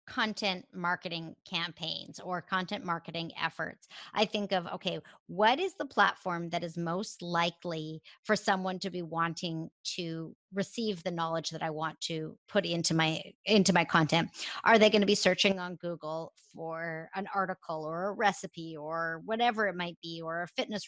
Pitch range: 170-210 Hz